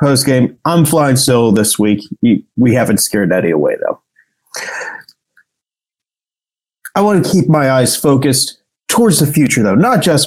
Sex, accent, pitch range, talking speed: male, American, 125-175 Hz, 150 wpm